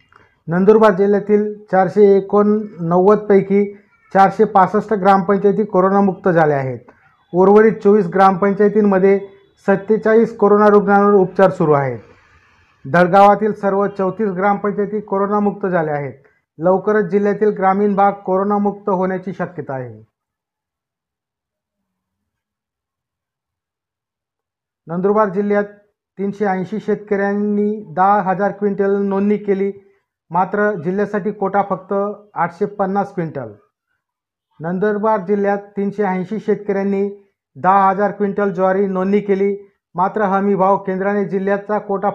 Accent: native